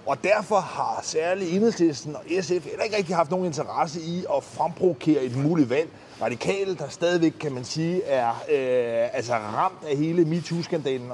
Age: 30-49